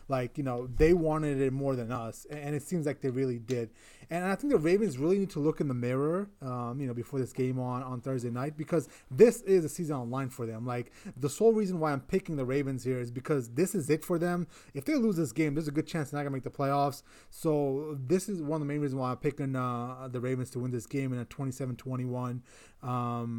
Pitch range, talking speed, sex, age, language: 125-150 Hz, 260 wpm, male, 20-39, English